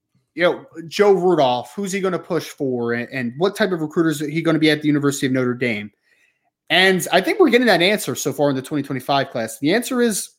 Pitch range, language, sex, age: 140-185 Hz, English, male, 20-39